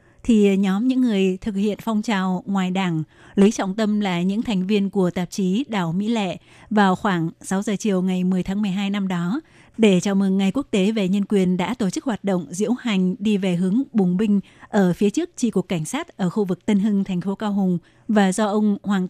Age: 20-39